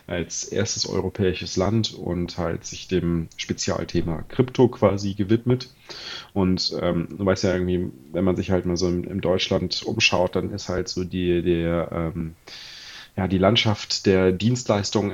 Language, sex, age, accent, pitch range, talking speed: German, male, 30-49, German, 90-105 Hz, 155 wpm